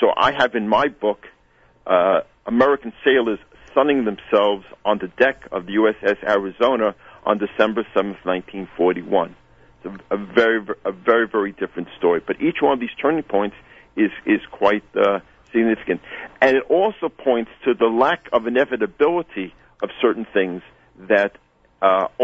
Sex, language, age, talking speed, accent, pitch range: male, English, 50-69, 155 wpm, American, 100-135 Hz